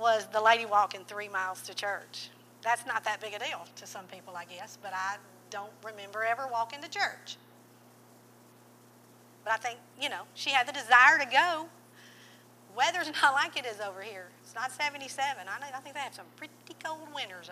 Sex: female